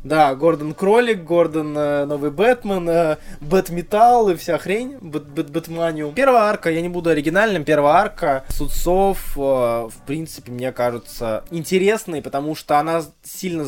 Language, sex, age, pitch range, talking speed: Russian, male, 20-39, 130-175 Hz, 125 wpm